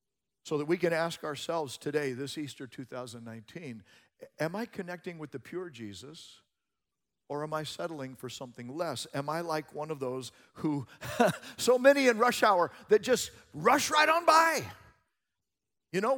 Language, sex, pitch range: English, male, 120-195 Hz